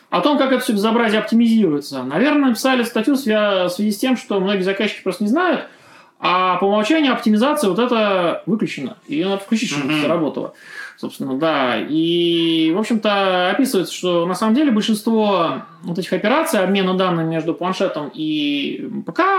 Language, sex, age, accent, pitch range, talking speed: Russian, male, 20-39, native, 180-265 Hz, 165 wpm